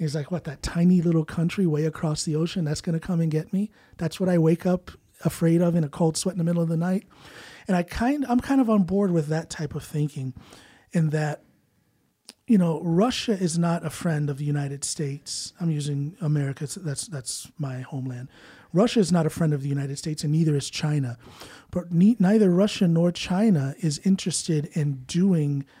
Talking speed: 210 wpm